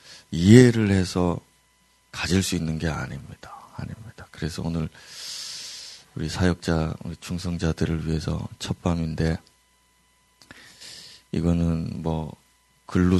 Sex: male